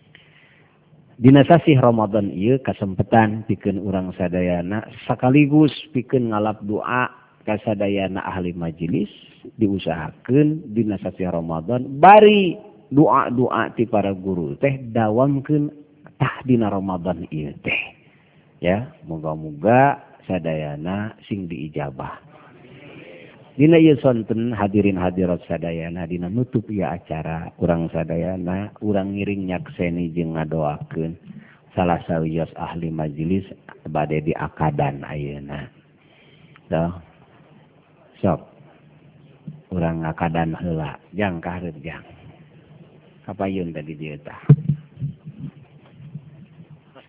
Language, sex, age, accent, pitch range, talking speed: Indonesian, male, 50-69, native, 85-145 Hz, 85 wpm